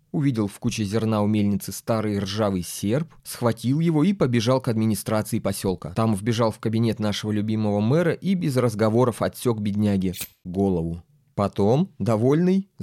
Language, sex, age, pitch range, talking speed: Russian, male, 20-39, 100-130 Hz, 145 wpm